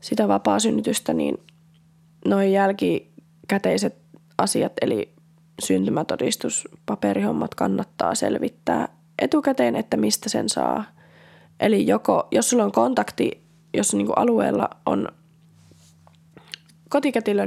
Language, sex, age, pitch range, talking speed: Finnish, female, 20-39, 115-190 Hz, 95 wpm